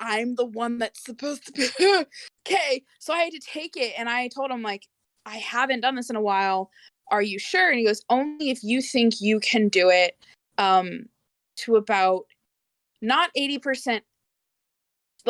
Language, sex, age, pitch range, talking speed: English, female, 20-39, 200-265 Hz, 175 wpm